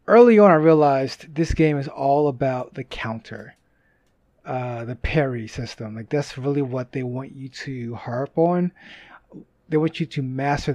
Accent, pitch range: American, 135-175 Hz